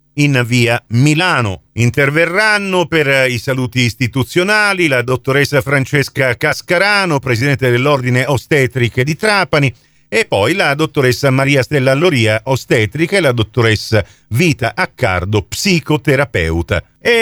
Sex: male